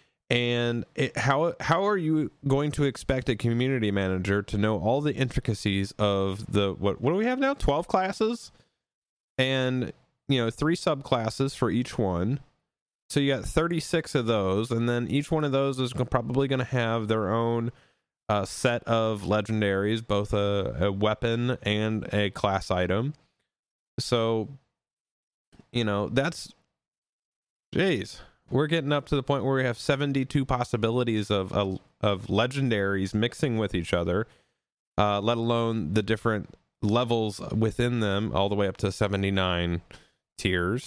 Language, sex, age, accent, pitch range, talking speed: English, male, 30-49, American, 100-135 Hz, 155 wpm